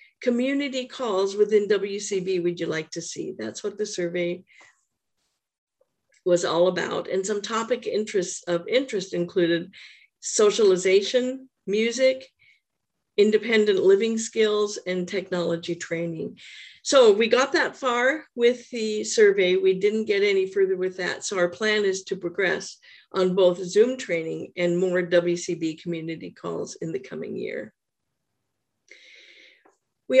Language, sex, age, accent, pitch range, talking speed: English, female, 50-69, American, 185-260 Hz, 130 wpm